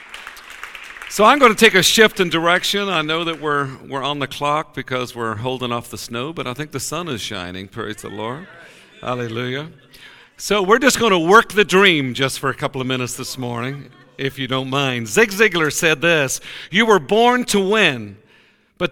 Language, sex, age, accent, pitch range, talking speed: English, male, 50-69, American, 135-190 Hz, 205 wpm